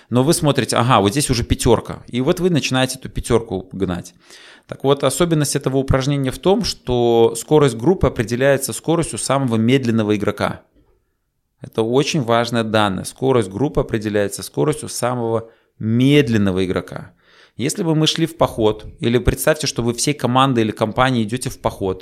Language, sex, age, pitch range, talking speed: Russian, male, 20-39, 115-140 Hz, 160 wpm